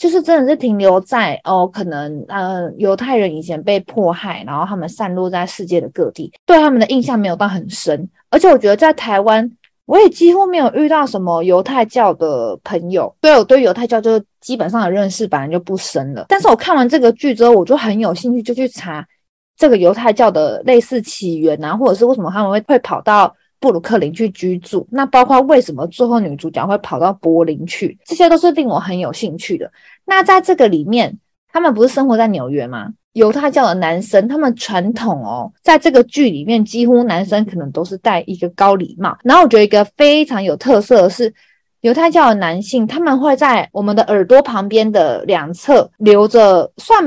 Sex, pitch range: female, 185-255 Hz